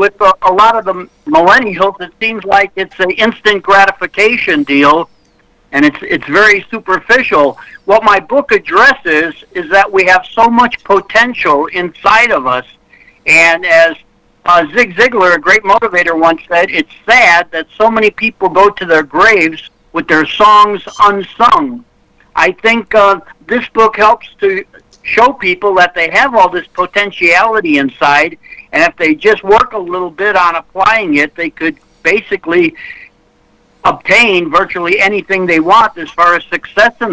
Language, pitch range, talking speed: English, 175-230 Hz, 160 wpm